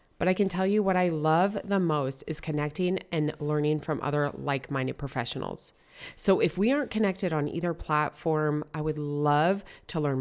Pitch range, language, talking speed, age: 150-195 Hz, English, 180 wpm, 30-49